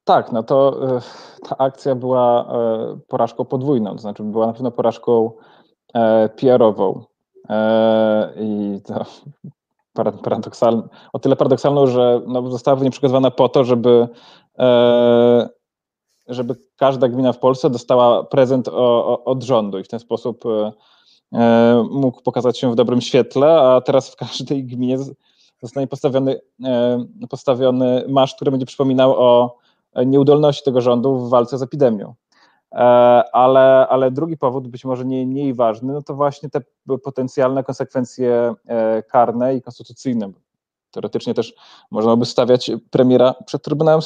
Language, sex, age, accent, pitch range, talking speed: Polish, male, 20-39, native, 120-135 Hz, 125 wpm